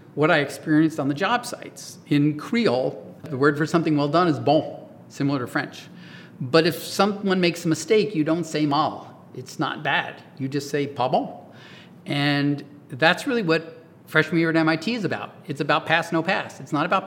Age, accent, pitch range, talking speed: 40-59, American, 140-165 Hz, 195 wpm